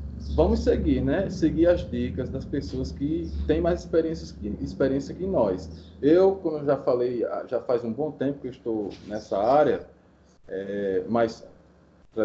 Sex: male